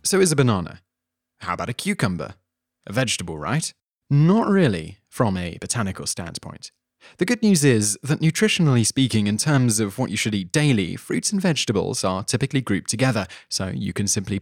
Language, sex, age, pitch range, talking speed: English, male, 20-39, 100-140 Hz, 180 wpm